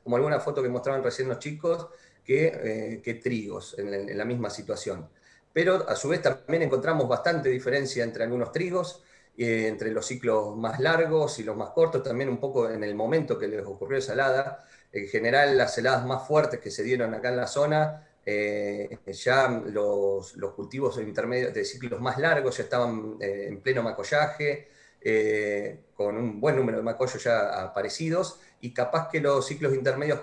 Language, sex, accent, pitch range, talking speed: Spanish, male, Argentinian, 110-145 Hz, 185 wpm